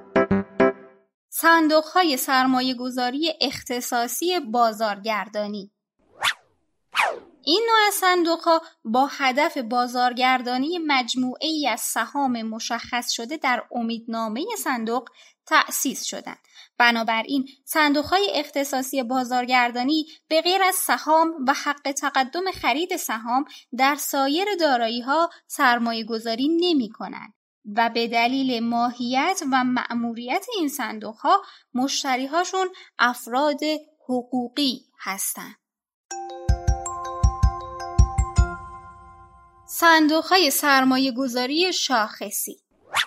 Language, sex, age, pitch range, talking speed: Persian, female, 20-39, 235-315 Hz, 85 wpm